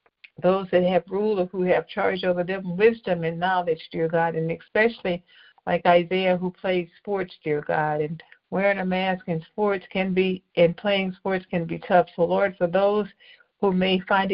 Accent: American